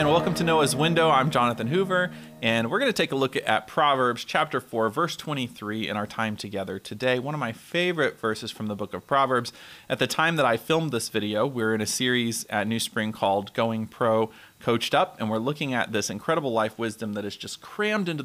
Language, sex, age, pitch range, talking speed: English, male, 30-49, 110-145 Hz, 230 wpm